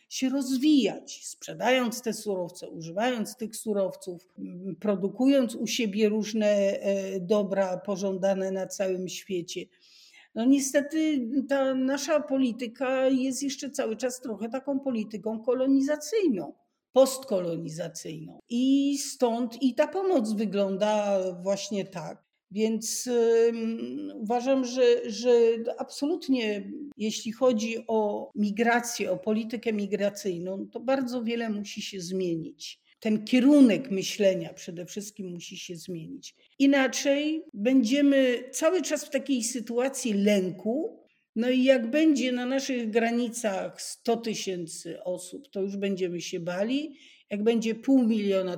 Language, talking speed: Polish, 115 wpm